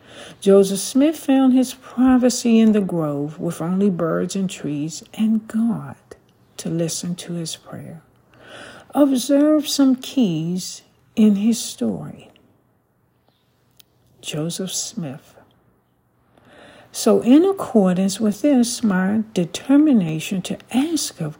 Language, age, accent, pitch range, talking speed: English, 60-79, American, 165-235 Hz, 105 wpm